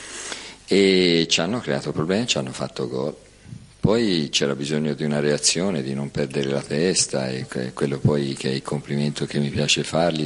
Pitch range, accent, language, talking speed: 70-80 Hz, native, Italian, 180 wpm